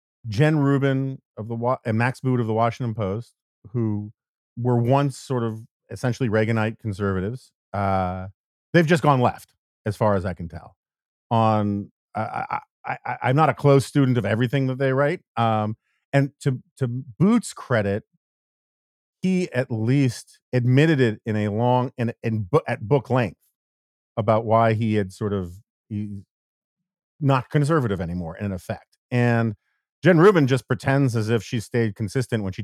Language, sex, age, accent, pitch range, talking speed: English, male, 40-59, American, 105-135 Hz, 160 wpm